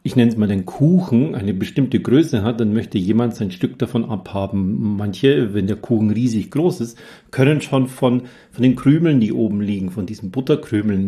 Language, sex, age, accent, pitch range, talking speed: German, male, 40-59, German, 110-140 Hz, 195 wpm